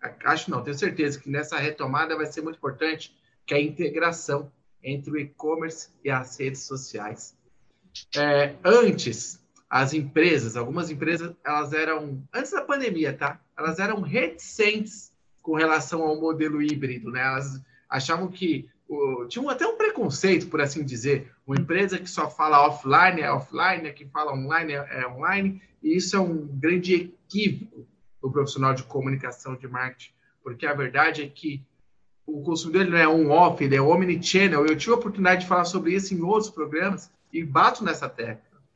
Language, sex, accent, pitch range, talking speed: Portuguese, male, Brazilian, 145-190 Hz, 170 wpm